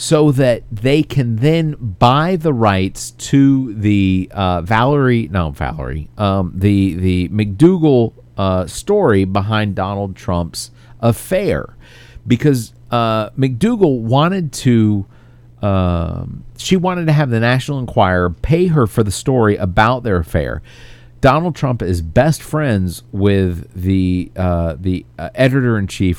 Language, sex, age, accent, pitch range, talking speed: English, male, 40-59, American, 95-140 Hz, 130 wpm